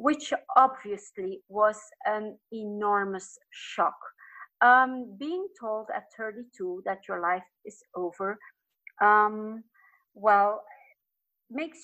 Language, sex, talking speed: English, female, 95 wpm